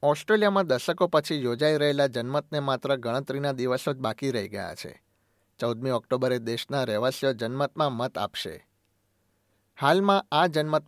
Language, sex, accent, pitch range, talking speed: Gujarati, male, native, 110-145 Hz, 140 wpm